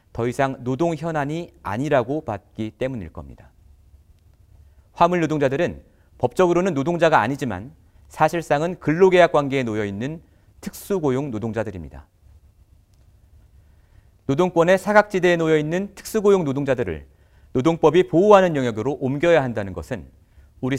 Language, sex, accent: Korean, male, native